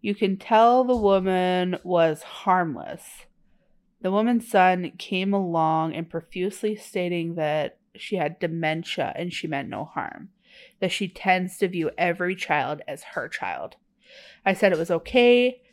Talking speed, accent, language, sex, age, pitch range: 150 wpm, American, English, female, 30-49, 175-225 Hz